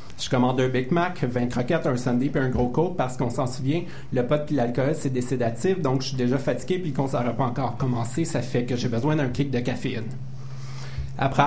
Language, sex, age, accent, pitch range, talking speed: French, male, 30-49, Canadian, 130-160 Hz, 240 wpm